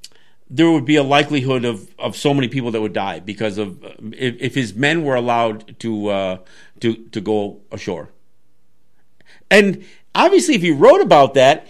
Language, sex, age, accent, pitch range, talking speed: English, male, 50-69, American, 120-190 Hz, 175 wpm